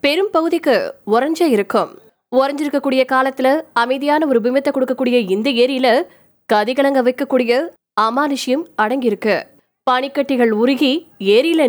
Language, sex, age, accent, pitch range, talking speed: Tamil, female, 20-39, native, 245-305 Hz, 70 wpm